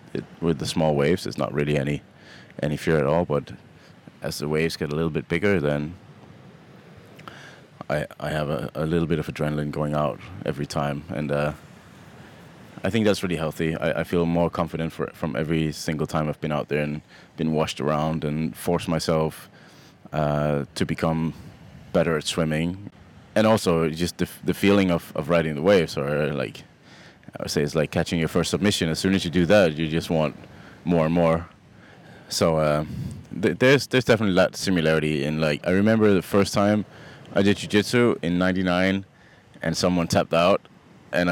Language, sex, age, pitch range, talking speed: English, male, 20-39, 75-90 Hz, 185 wpm